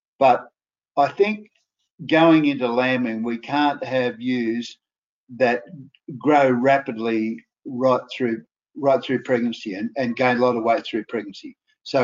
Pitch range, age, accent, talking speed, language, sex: 120-140 Hz, 60-79, Australian, 140 wpm, English, male